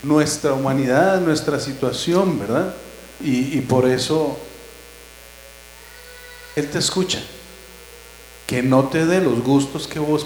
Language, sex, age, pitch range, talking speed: Spanish, male, 40-59, 110-165 Hz, 115 wpm